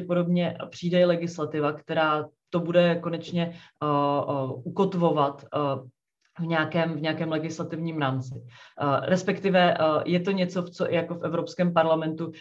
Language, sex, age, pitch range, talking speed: Czech, female, 30-49, 145-170 Hz, 135 wpm